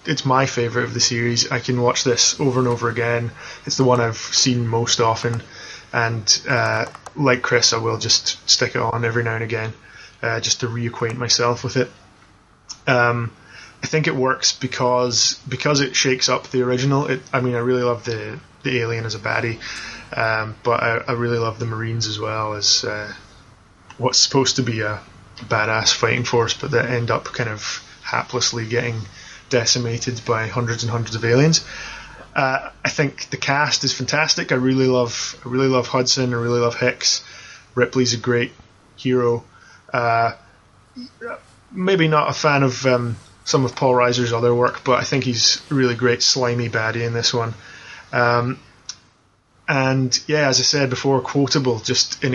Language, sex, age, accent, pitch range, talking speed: English, male, 20-39, British, 115-130 Hz, 180 wpm